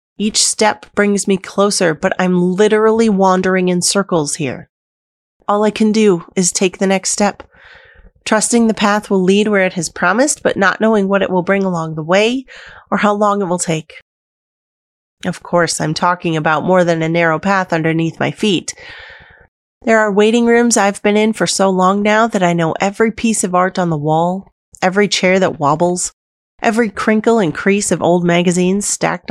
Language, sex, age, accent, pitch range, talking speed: English, female, 30-49, American, 165-210 Hz, 190 wpm